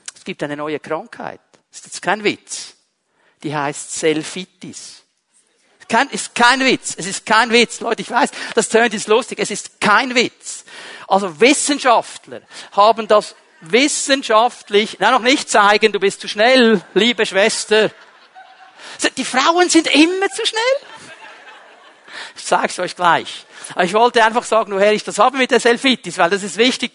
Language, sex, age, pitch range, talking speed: German, male, 50-69, 195-240 Hz, 160 wpm